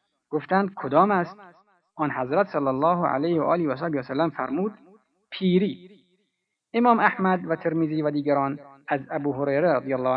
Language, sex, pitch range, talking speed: Persian, male, 140-185 Hz, 150 wpm